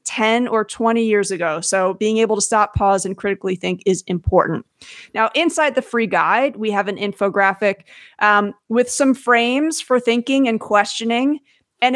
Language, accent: English, American